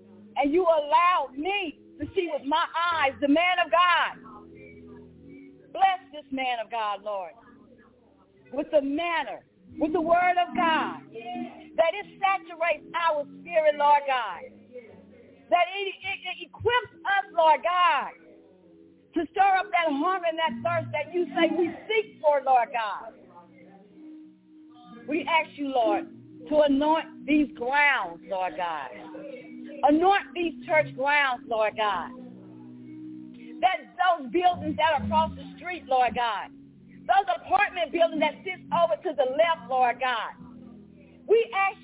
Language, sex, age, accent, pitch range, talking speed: English, female, 40-59, American, 255-355 Hz, 140 wpm